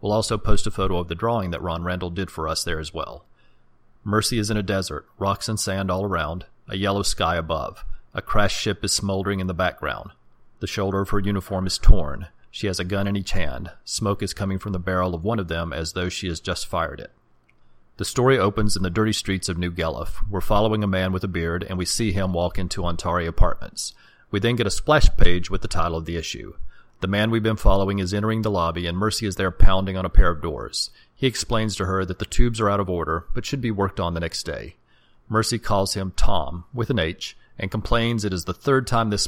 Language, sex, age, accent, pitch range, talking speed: English, male, 40-59, American, 90-105 Hz, 245 wpm